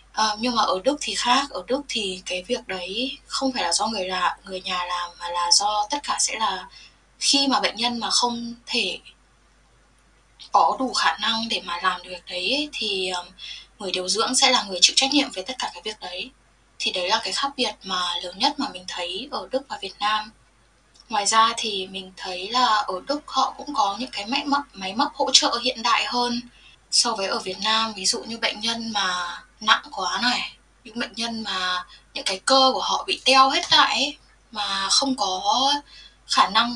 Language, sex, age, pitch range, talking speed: Vietnamese, female, 10-29, 190-265 Hz, 215 wpm